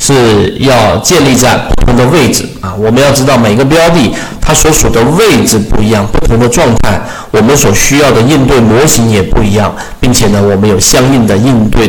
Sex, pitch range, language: male, 110-150 Hz, Chinese